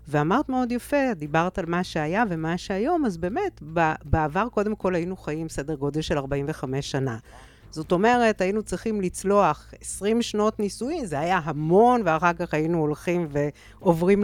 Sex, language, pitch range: female, Hebrew, 150-185 Hz